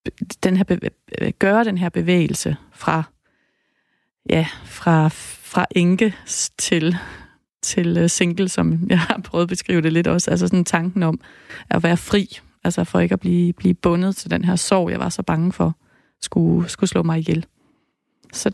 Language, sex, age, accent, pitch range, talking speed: Danish, female, 30-49, native, 170-195 Hz, 170 wpm